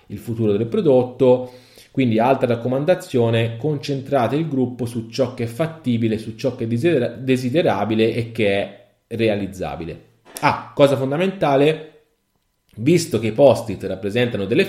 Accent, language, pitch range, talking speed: native, Italian, 105-140 Hz, 135 wpm